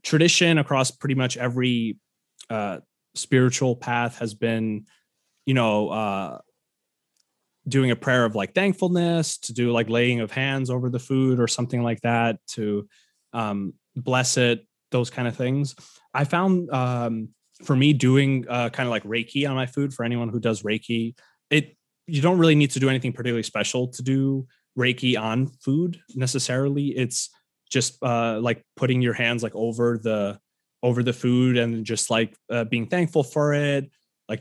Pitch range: 115-135 Hz